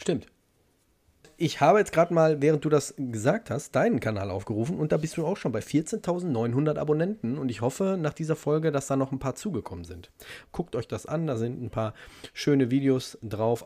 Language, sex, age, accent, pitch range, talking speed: German, male, 30-49, German, 105-130 Hz, 205 wpm